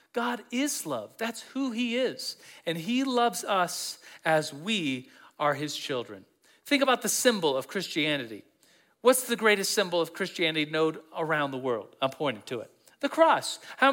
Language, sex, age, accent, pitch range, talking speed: English, male, 40-59, American, 170-230 Hz, 170 wpm